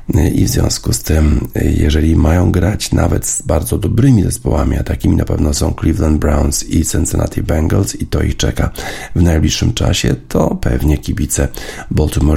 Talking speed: 165 wpm